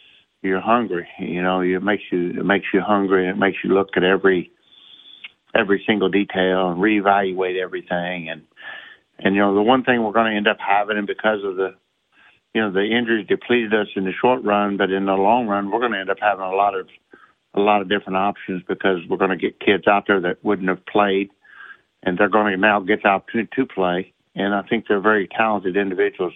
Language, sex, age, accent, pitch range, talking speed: English, male, 60-79, American, 95-105 Hz, 225 wpm